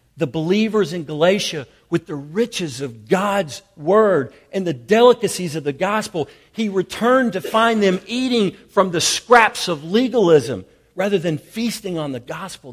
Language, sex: English, male